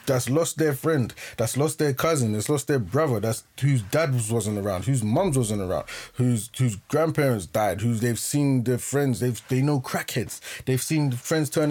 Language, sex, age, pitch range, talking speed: English, male, 20-39, 105-145 Hz, 195 wpm